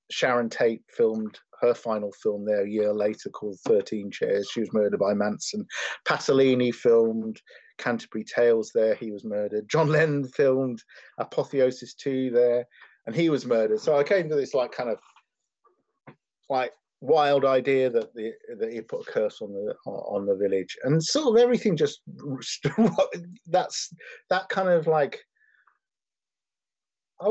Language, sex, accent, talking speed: English, male, British, 155 wpm